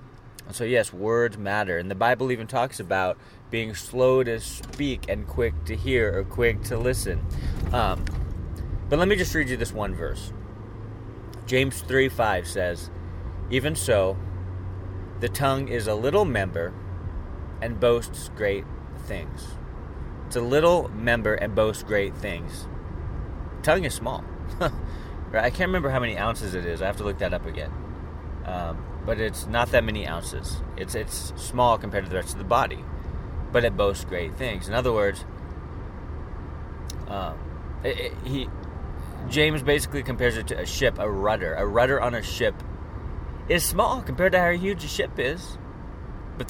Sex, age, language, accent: male, 30-49, English, American